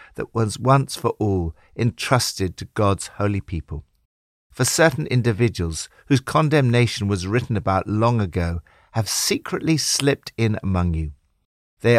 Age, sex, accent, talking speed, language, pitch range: 50-69, male, British, 135 wpm, English, 95-135 Hz